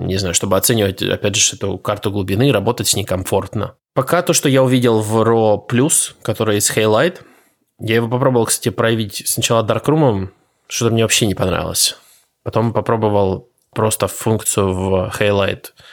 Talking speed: 155 wpm